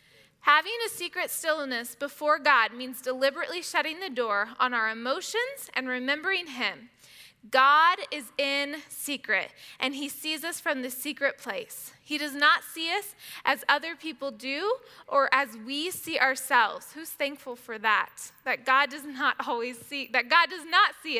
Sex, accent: female, American